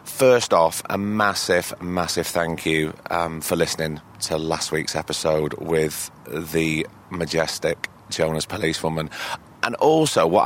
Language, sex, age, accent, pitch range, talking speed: English, male, 30-49, British, 80-100 Hz, 125 wpm